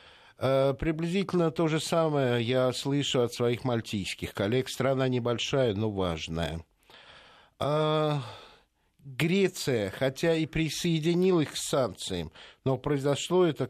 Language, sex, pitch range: Russian, male, 115-145 Hz